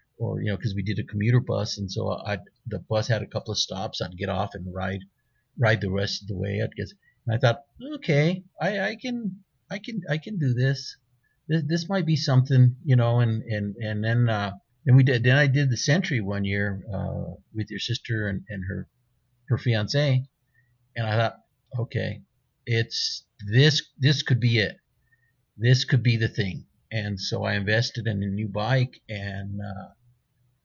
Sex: male